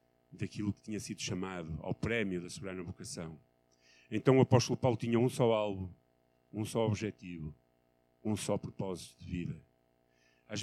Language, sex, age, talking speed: Portuguese, male, 50-69, 150 wpm